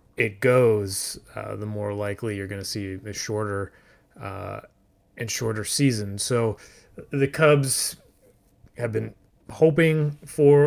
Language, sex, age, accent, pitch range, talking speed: English, male, 30-49, American, 110-135 Hz, 130 wpm